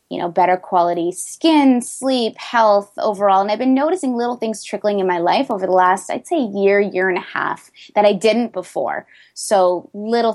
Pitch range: 185-220 Hz